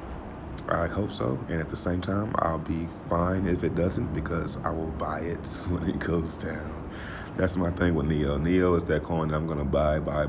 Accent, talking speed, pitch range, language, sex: American, 220 wpm, 75-90 Hz, English, male